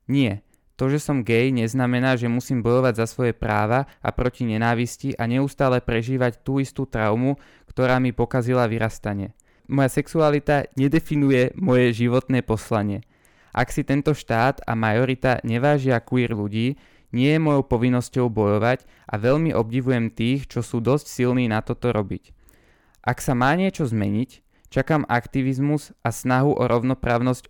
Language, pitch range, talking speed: Slovak, 115-130 Hz, 145 wpm